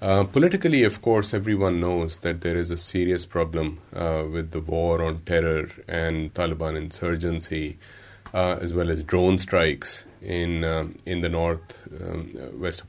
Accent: Indian